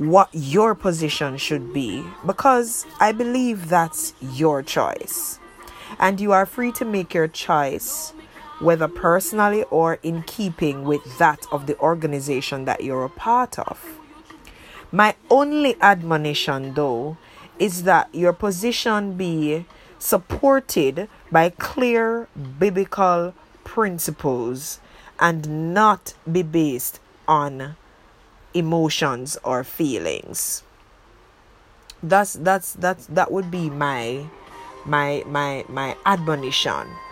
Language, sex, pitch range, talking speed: English, female, 150-225 Hz, 110 wpm